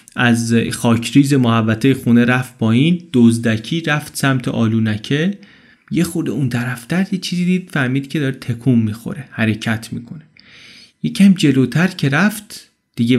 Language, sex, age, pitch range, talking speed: Persian, male, 30-49, 115-160 Hz, 145 wpm